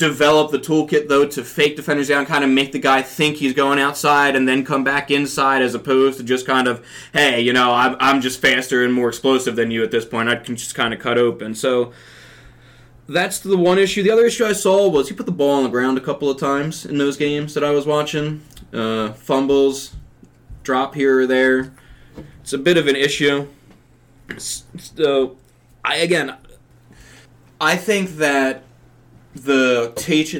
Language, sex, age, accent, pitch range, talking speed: English, male, 20-39, American, 120-145 Hz, 190 wpm